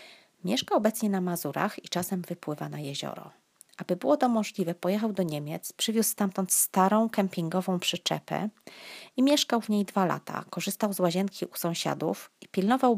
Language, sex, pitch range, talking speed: Polish, female, 170-210 Hz, 155 wpm